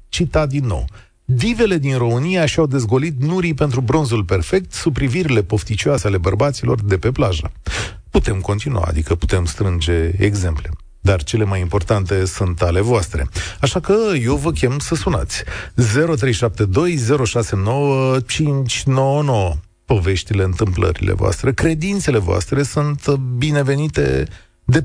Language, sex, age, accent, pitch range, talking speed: Romanian, male, 40-59, native, 95-150 Hz, 120 wpm